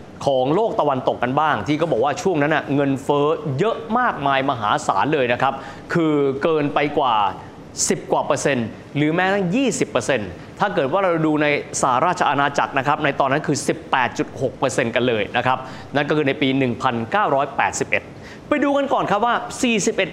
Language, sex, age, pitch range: Thai, male, 20-39, 135-190 Hz